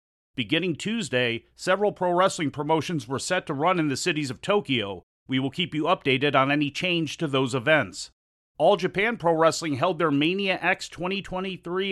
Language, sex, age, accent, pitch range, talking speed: English, male, 40-59, American, 140-170 Hz, 175 wpm